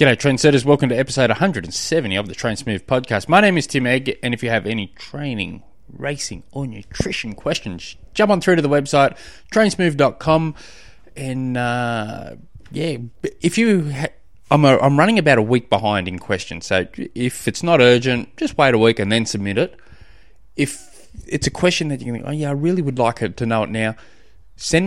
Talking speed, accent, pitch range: 200 wpm, Australian, 100-135 Hz